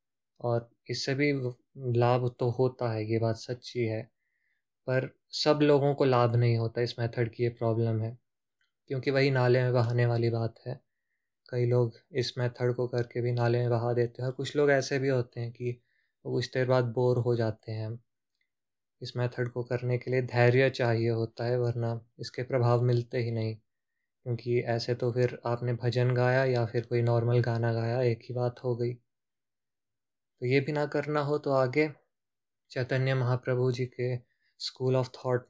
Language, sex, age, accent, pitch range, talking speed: Hindi, male, 20-39, native, 120-130 Hz, 180 wpm